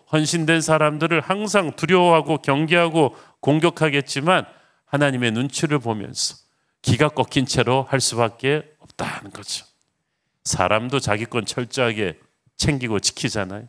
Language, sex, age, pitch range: Korean, male, 40-59, 110-145 Hz